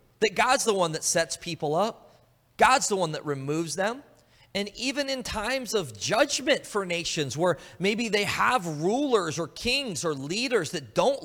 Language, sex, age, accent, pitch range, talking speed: English, male, 30-49, American, 150-240 Hz, 175 wpm